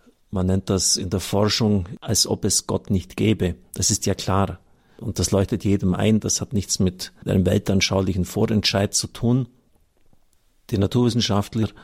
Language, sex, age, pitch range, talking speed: German, male, 50-69, 95-115 Hz, 160 wpm